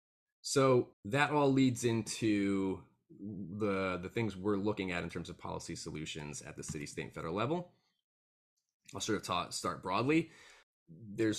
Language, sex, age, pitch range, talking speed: English, male, 20-39, 95-125 Hz, 160 wpm